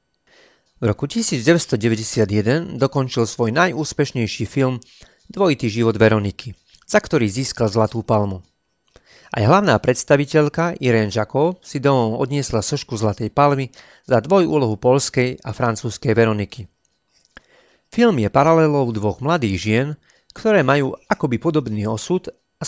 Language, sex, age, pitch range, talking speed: Slovak, male, 40-59, 110-150 Hz, 115 wpm